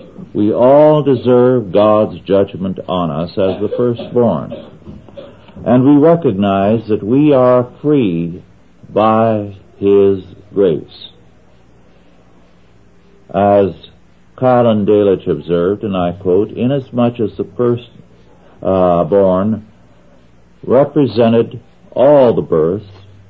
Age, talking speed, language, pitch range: 60-79, 95 wpm, English, 85-115 Hz